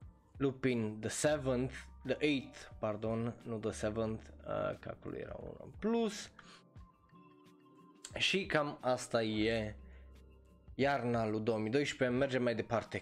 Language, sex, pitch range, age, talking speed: Romanian, male, 110-135 Hz, 20-39, 115 wpm